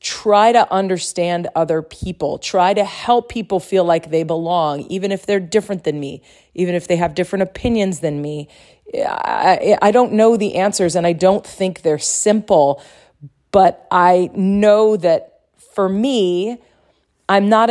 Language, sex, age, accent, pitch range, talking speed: English, female, 40-59, American, 175-220 Hz, 155 wpm